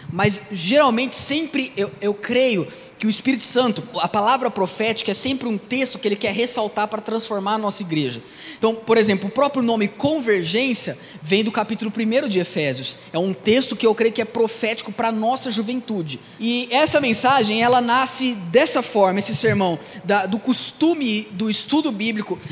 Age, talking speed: 20-39, 175 wpm